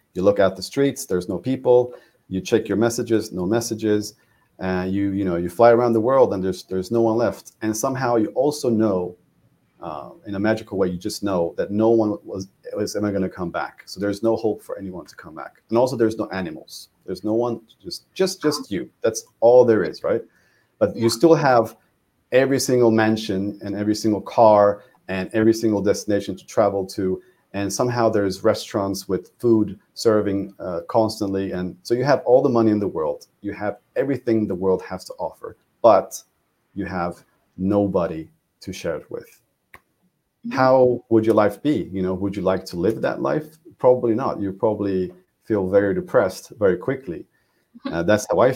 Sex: male